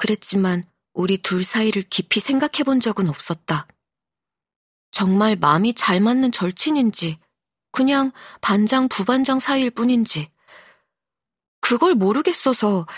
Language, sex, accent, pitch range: Korean, female, native, 190-265 Hz